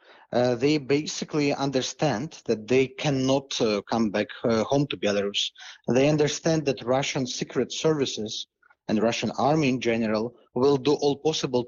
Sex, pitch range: male, 120-150 Hz